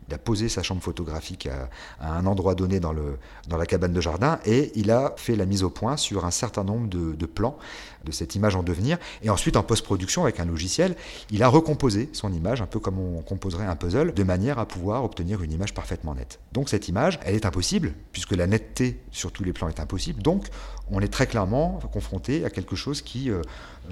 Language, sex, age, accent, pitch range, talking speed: French, male, 40-59, French, 90-125 Hz, 230 wpm